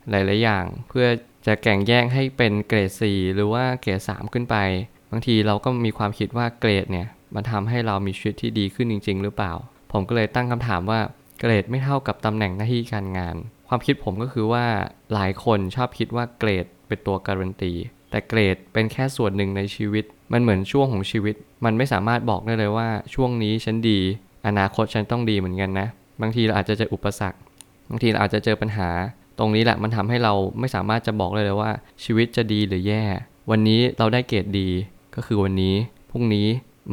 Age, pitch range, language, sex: 20-39, 100-115 Hz, Thai, male